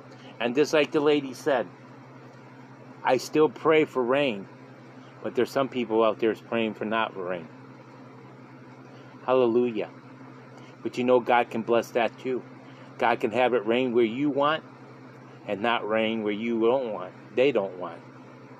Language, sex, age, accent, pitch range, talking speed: English, male, 40-59, American, 105-130 Hz, 155 wpm